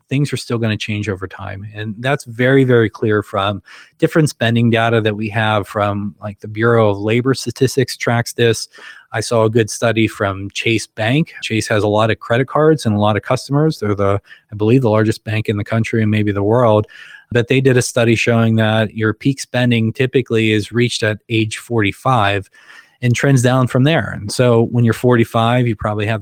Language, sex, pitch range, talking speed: English, male, 105-120 Hz, 210 wpm